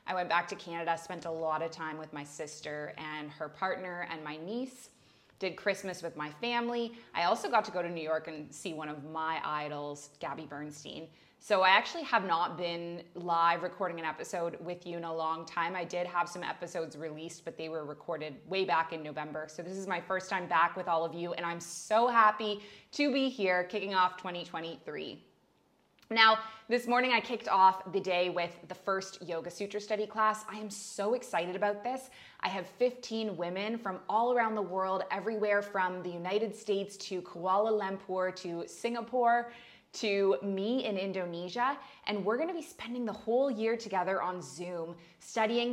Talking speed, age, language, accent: 195 wpm, 20-39, English, American